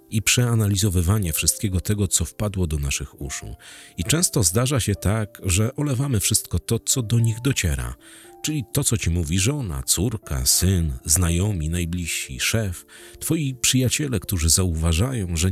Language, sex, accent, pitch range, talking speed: Polish, male, native, 85-120 Hz, 145 wpm